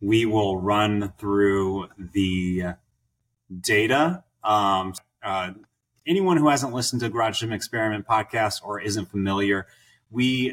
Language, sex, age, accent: English, male, 30-49, American